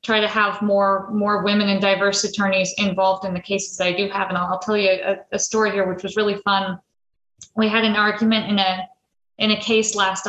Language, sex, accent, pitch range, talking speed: English, female, American, 190-220 Hz, 225 wpm